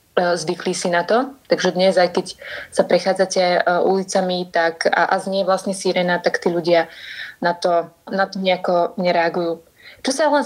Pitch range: 175-200 Hz